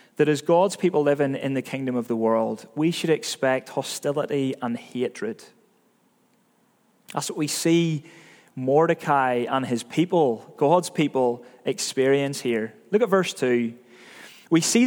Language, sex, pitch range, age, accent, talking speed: English, male, 135-180 Hz, 30-49, British, 140 wpm